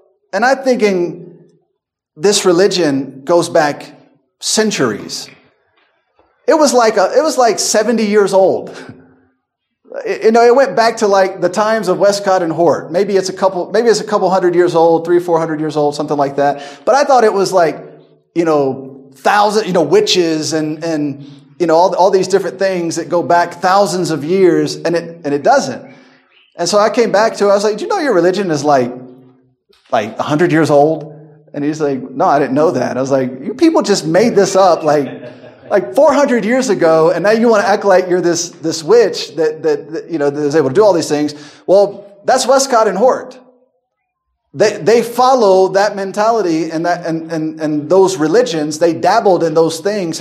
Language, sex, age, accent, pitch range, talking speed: English, male, 30-49, American, 155-210 Hz, 205 wpm